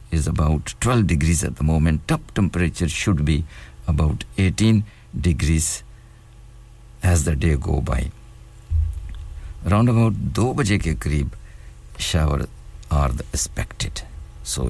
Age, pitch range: 60-79, 80-95 Hz